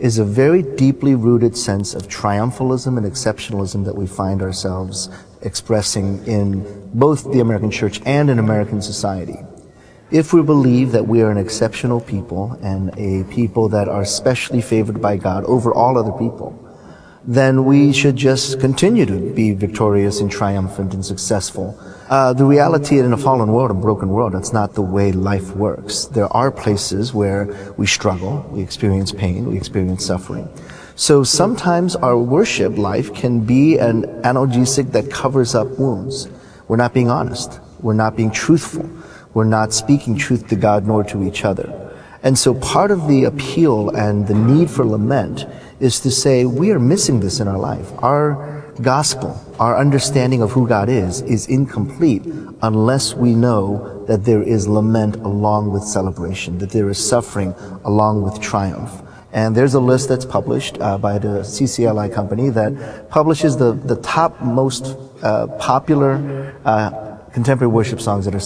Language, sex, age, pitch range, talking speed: English, male, 30-49, 100-130 Hz, 165 wpm